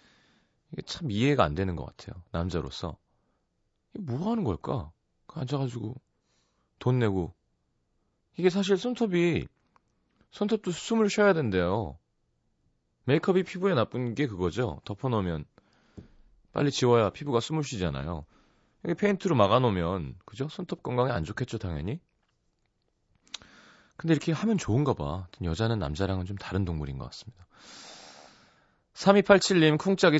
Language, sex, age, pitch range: Korean, male, 30-49, 90-140 Hz